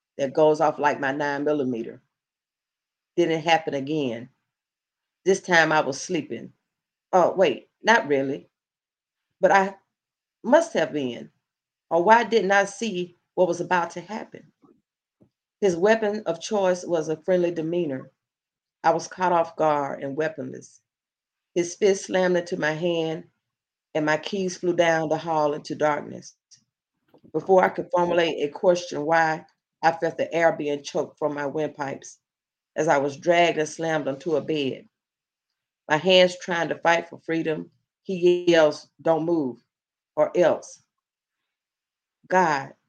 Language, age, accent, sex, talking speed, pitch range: English, 40-59, American, female, 145 wpm, 150-180 Hz